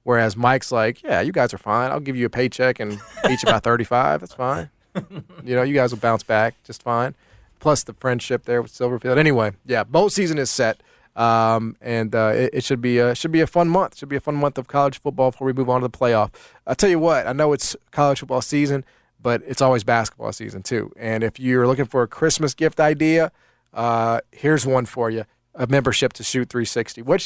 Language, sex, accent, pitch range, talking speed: English, male, American, 120-140 Hz, 230 wpm